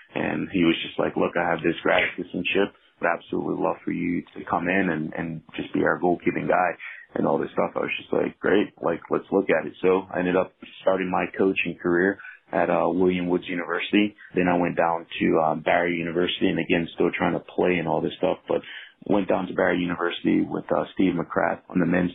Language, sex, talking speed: English, male, 230 wpm